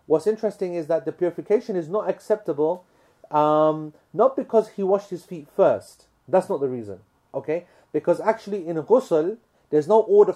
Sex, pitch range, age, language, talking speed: male, 135-180 Hz, 30-49, English, 170 wpm